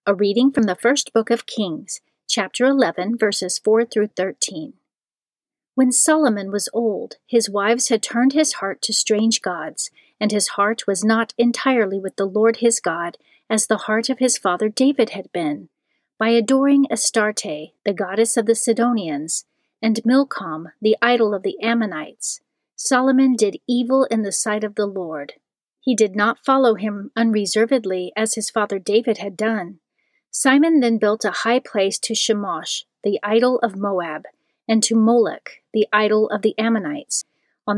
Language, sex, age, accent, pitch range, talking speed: English, female, 40-59, American, 205-235 Hz, 165 wpm